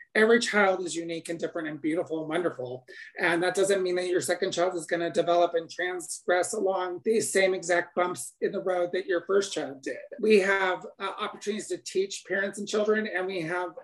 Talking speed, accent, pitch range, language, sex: 210 wpm, American, 175-205 Hz, English, male